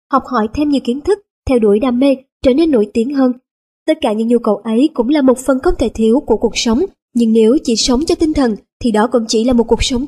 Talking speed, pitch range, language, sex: 275 wpm, 225-275 Hz, Vietnamese, male